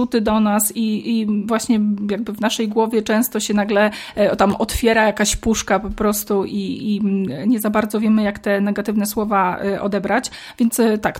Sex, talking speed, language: female, 165 wpm, Polish